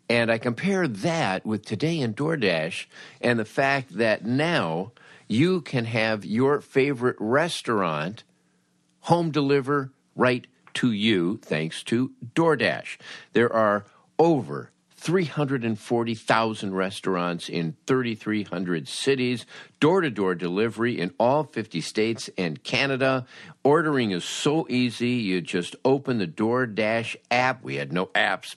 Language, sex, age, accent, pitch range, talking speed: English, male, 50-69, American, 95-135 Hz, 120 wpm